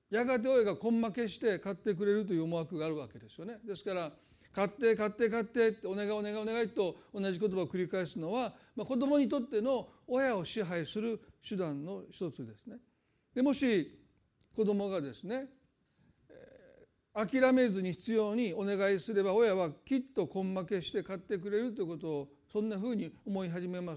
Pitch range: 185-235 Hz